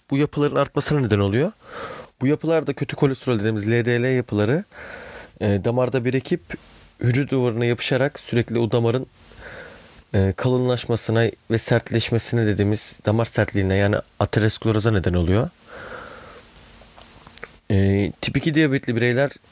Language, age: Turkish, 30-49